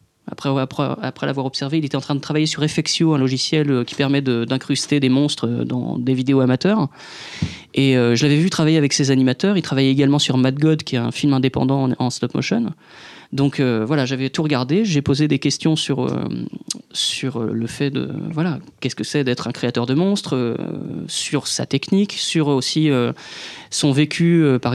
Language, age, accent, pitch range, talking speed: French, 20-39, French, 130-150 Hz, 205 wpm